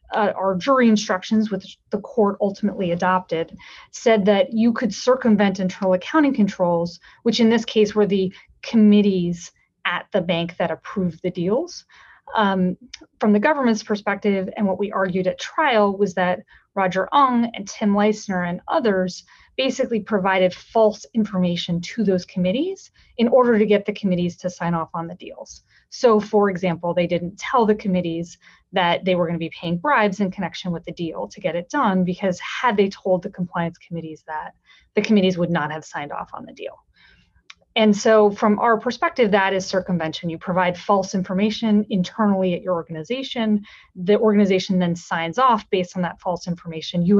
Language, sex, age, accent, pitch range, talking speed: English, female, 30-49, American, 180-215 Hz, 180 wpm